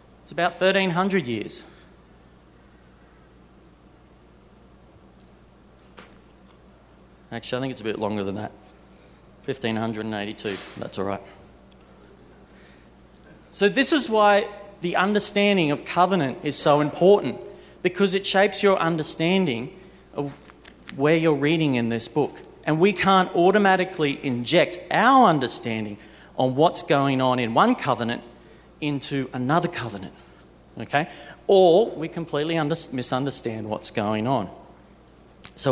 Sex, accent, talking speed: male, Australian, 115 wpm